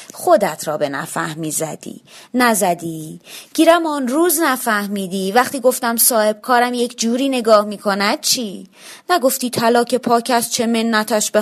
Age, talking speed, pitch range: 30-49, 135 wpm, 185-240 Hz